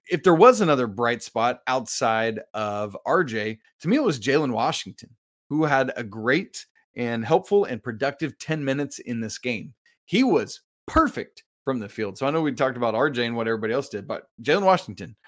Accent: American